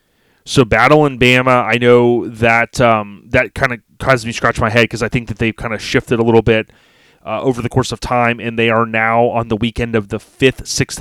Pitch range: 110-130 Hz